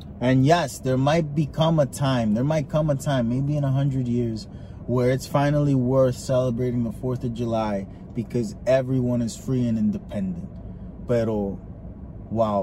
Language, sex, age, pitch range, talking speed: English, male, 20-39, 120-180 Hz, 160 wpm